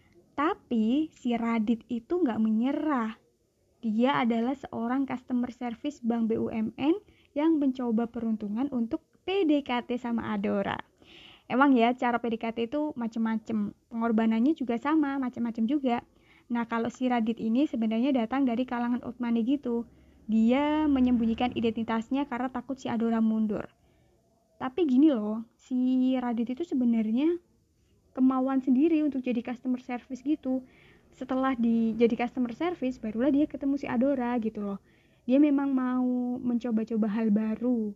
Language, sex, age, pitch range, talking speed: Indonesian, female, 20-39, 230-265 Hz, 130 wpm